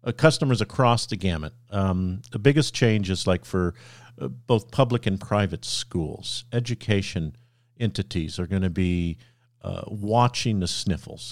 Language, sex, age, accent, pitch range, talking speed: English, male, 50-69, American, 95-120 Hz, 150 wpm